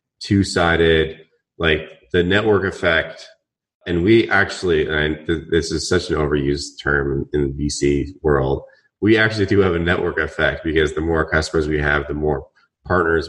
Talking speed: 165 wpm